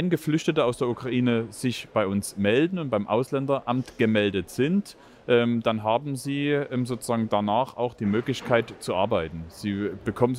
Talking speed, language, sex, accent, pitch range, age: 145 wpm, German, male, German, 110-130 Hz, 30-49